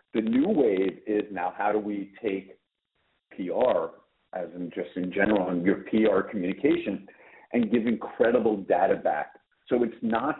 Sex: male